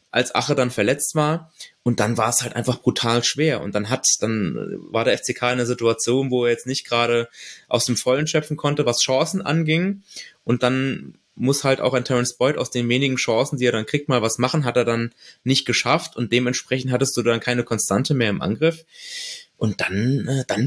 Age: 20-39